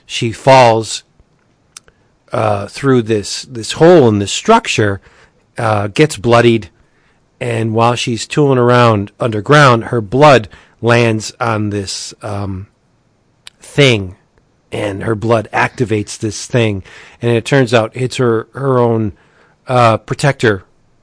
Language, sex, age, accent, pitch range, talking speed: English, male, 40-59, American, 110-125 Hz, 120 wpm